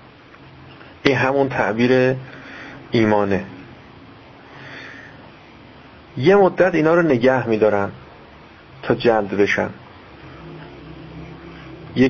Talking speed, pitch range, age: 70 wpm, 105-135 Hz, 40-59